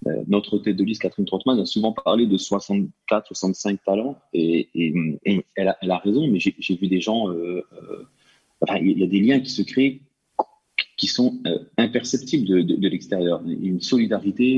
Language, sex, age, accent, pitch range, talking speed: French, male, 30-49, French, 90-115 Hz, 200 wpm